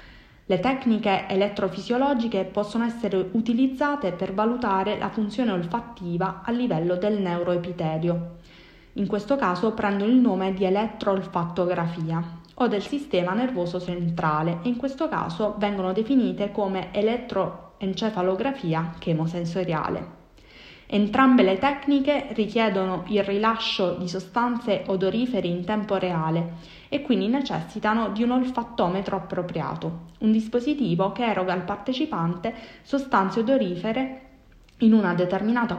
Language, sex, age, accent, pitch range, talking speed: Italian, female, 20-39, native, 180-235 Hz, 110 wpm